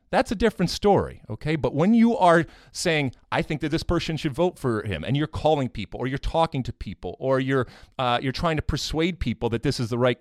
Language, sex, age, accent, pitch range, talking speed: English, male, 30-49, American, 100-140 Hz, 240 wpm